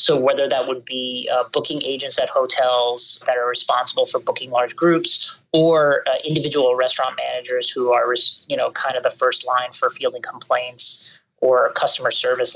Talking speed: 175 wpm